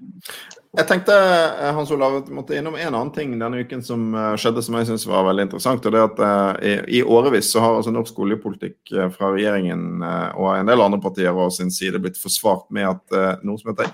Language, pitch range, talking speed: English, 95-115 Hz, 195 wpm